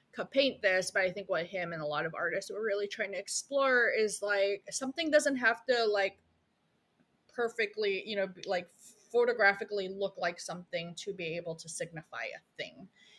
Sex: female